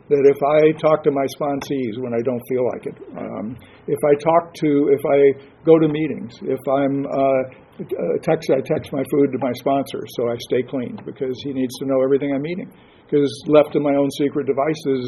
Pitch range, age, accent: 130-150 Hz, 60-79, American